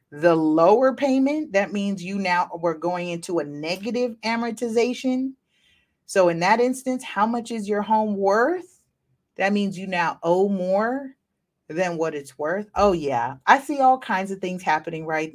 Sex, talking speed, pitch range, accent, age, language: female, 170 wpm, 155-220 Hz, American, 30-49, English